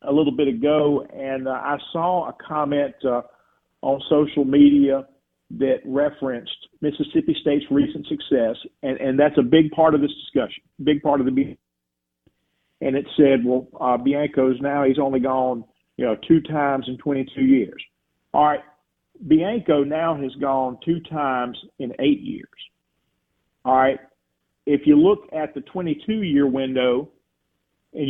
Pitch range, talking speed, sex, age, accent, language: 130-160 Hz, 160 wpm, male, 50-69, American, English